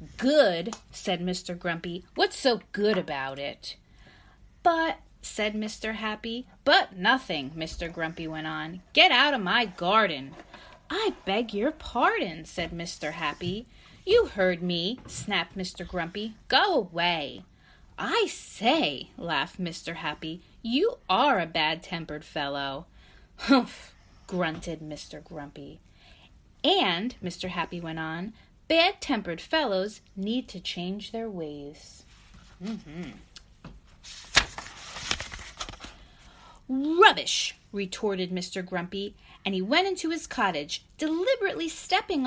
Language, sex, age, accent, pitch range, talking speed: English, female, 30-49, American, 170-250 Hz, 110 wpm